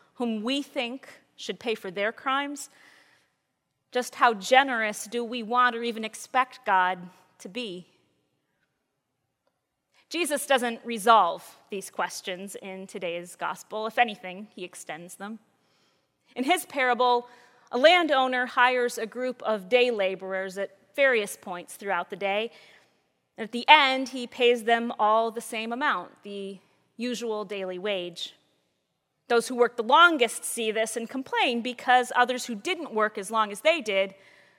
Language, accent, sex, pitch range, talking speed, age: English, American, female, 200-250 Hz, 145 wpm, 30-49